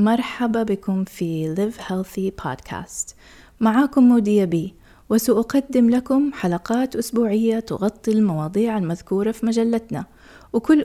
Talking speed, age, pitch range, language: 100 wpm, 20-39, 170-210 Hz, English